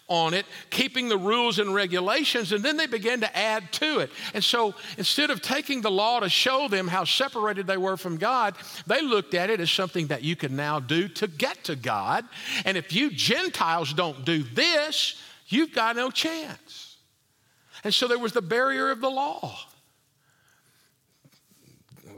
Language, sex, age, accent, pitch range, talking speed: English, male, 50-69, American, 170-235 Hz, 180 wpm